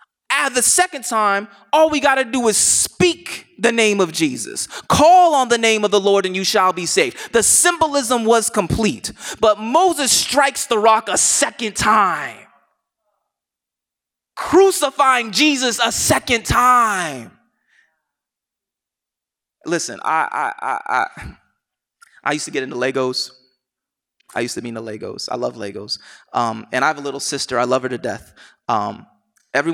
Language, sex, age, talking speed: English, male, 20-39, 155 wpm